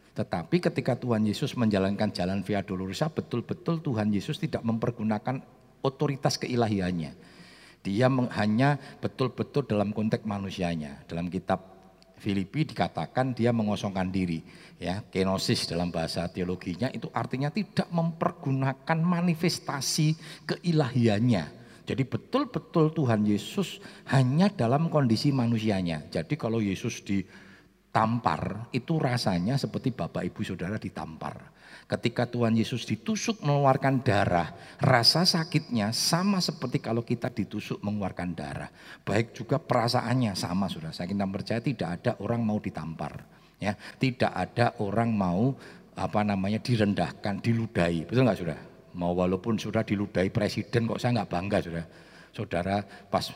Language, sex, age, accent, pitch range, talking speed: Indonesian, male, 50-69, native, 100-135 Hz, 125 wpm